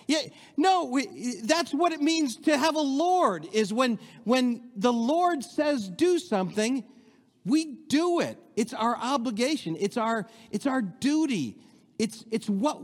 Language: English